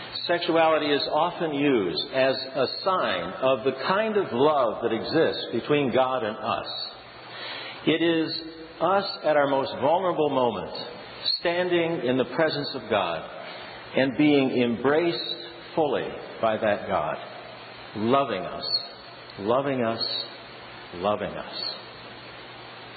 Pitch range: 120-160 Hz